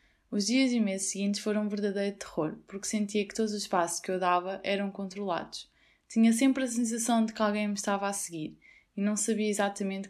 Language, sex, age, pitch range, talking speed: Portuguese, female, 20-39, 190-220 Hz, 210 wpm